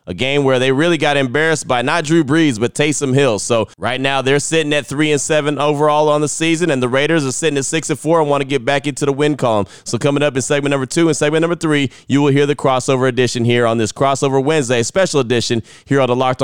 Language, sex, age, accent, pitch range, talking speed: English, male, 20-39, American, 125-150 Hz, 265 wpm